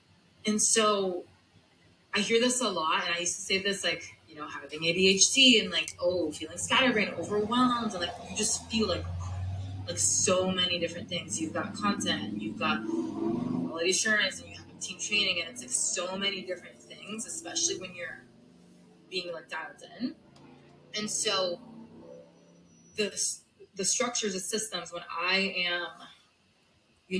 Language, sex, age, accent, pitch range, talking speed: English, female, 20-39, American, 165-205 Hz, 160 wpm